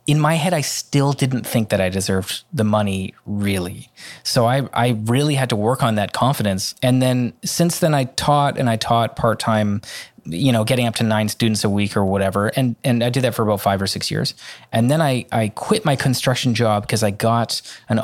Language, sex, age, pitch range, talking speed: English, male, 20-39, 110-130 Hz, 225 wpm